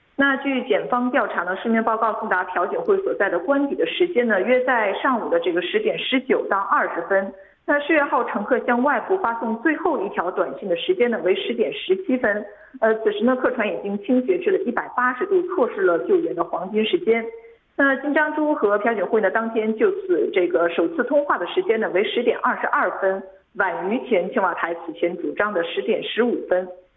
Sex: female